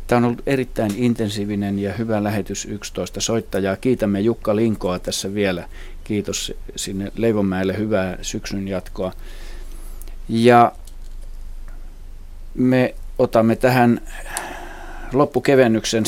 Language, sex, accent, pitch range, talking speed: Finnish, male, native, 95-110 Hz, 95 wpm